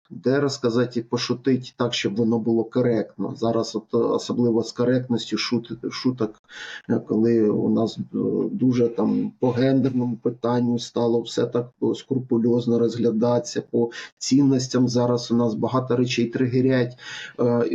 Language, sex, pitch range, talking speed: English, male, 115-135 Hz, 125 wpm